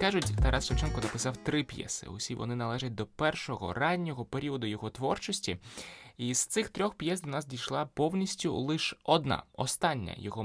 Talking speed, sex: 160 wpm, male